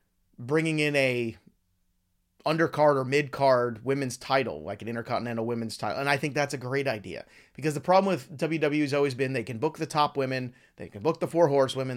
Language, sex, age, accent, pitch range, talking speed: English, male, 30-49, American, 115-160 Hz, 200 wpm